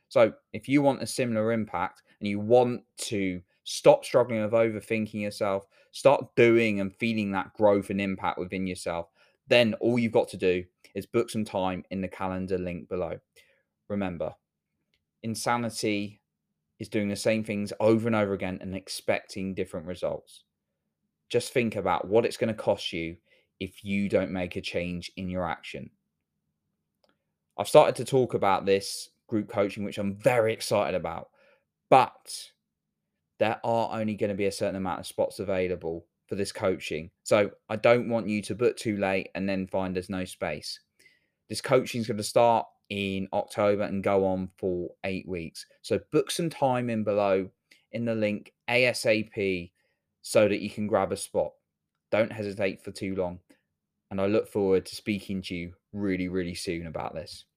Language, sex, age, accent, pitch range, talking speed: English, male, 20-39, British, 95-110 Hz, 175 wpm